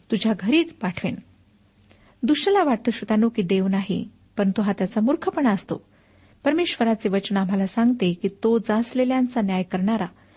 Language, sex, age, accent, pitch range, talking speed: Marathi, female, 50-69, native, 195-245 Hz, 135 wpm